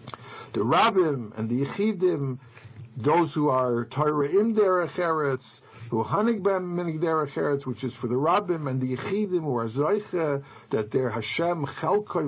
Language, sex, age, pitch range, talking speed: English, male, 60-79, 120-165 Hz, 140 wpm